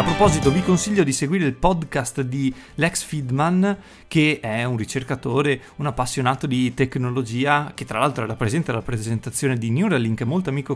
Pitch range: 125-155 Hz